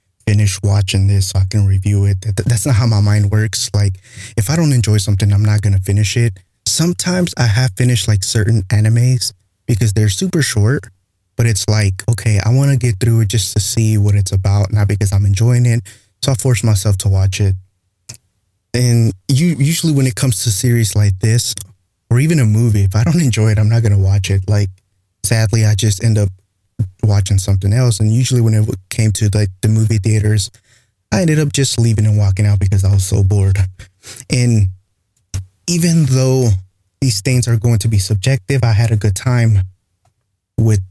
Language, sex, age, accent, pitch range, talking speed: English, male, 20-39, American, 100-120 Hz, 200 wpm